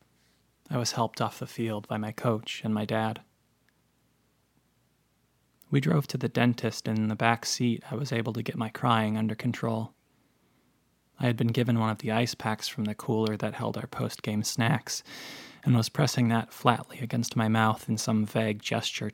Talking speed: 190 wpm